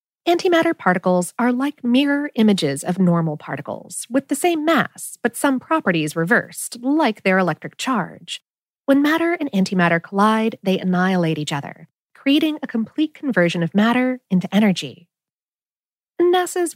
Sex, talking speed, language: female, 140 wpm, English